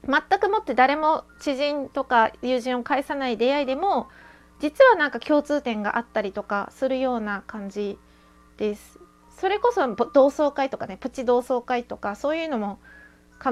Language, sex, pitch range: Japanese, female, 220-300 Hz